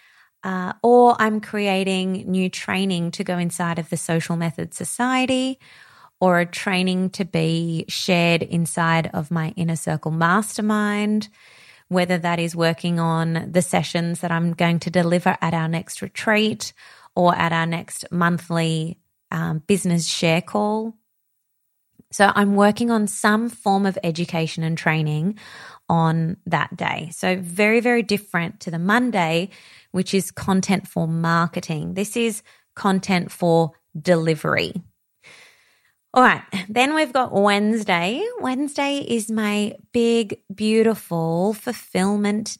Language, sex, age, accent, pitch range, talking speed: English, female, 20-39, Australian, 170-215 Hz, 130 wpm